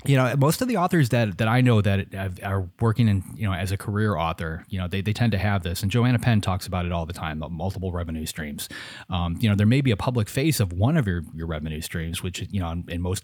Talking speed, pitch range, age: 280 wpm, 85-105 Hz, 30-49